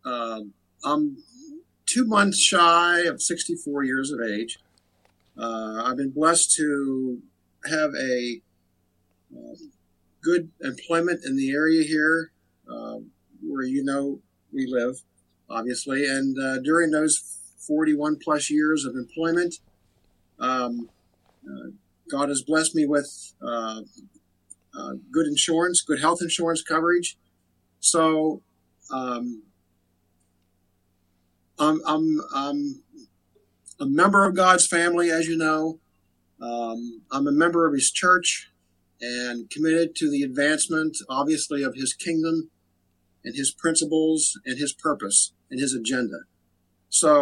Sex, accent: male, American